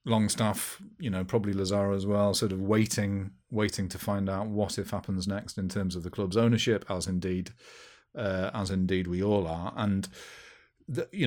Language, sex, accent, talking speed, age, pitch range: English, male, British, 185 wpm, 40-59, 95-110 Hz